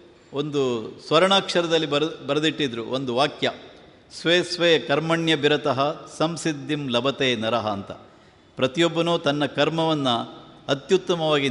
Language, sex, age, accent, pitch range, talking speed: Kannada, male, 50-69, native, 130-160 Hz, 90 wpm